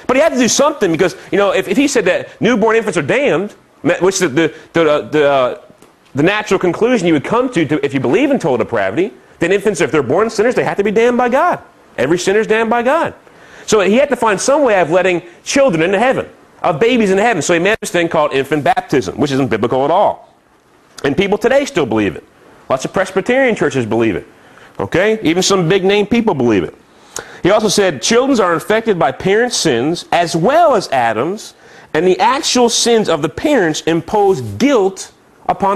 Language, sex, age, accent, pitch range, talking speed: English, male, 30-49, American, 170-245 Hz, 215 wpm